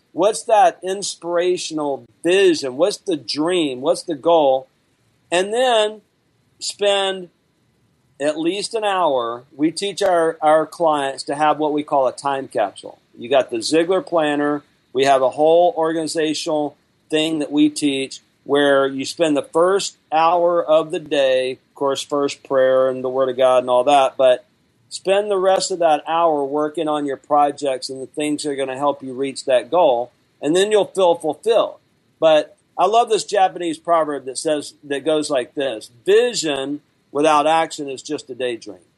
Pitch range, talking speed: 140-175 Hz, 170 wpm